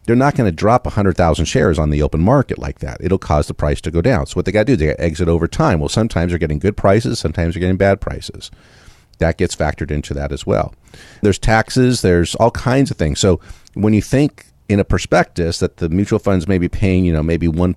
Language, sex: English, male